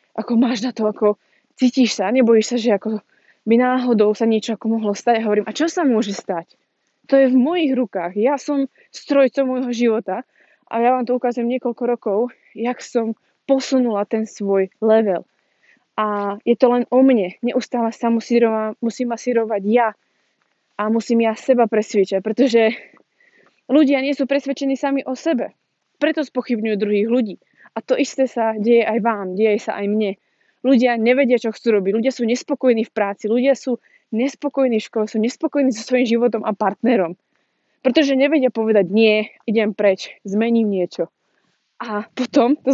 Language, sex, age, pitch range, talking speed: Slovak, female, 20-39, 215-260 Hz, 170 wpm